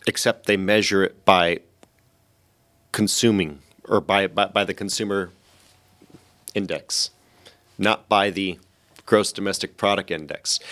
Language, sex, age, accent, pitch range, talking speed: English, male, 30-49, American, 90-110 Hz, 110 wpm